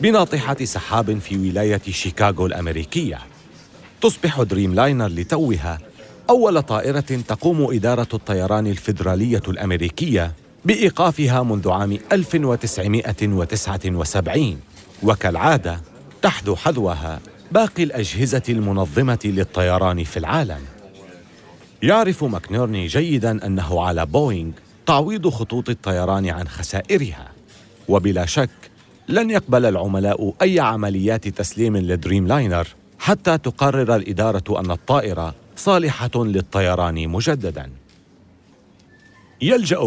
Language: Arabic